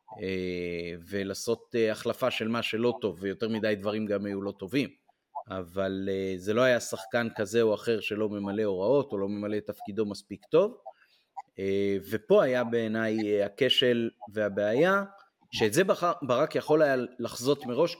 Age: 30-49